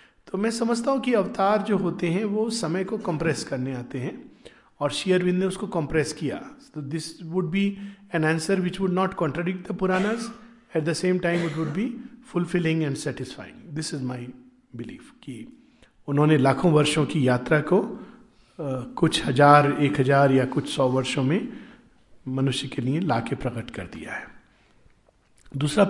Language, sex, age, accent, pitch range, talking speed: Hindi, male, 50-69, native, 145-185 Hz, 170 wpm